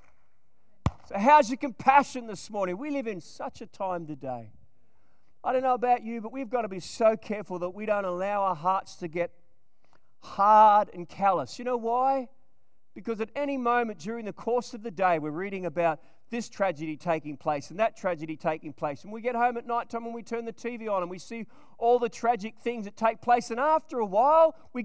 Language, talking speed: English, 210 wpm